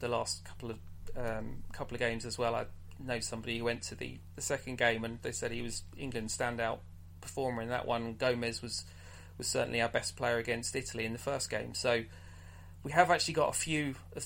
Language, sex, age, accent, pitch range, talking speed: English, male, 30-49, British, 90-125 Hz, 220 wpm